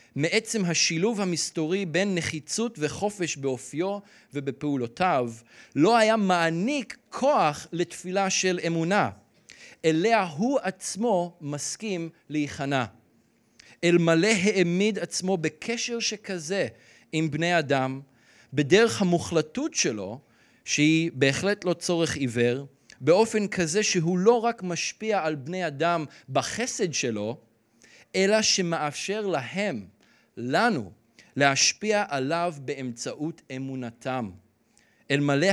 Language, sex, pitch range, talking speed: Hebrew, male, 135-190 Hz, 95 wpm